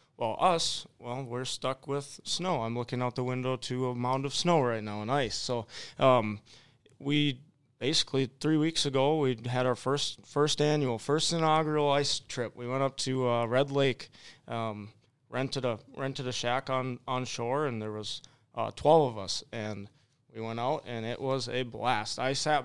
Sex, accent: male, American